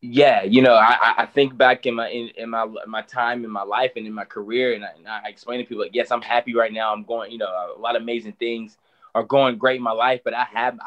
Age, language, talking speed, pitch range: 20-39, English, 285 wpm, 110-125 Hz